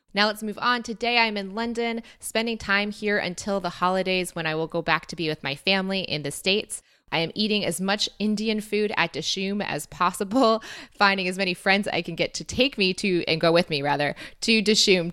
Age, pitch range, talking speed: 20-39, 165-215 Hz, 220 wpm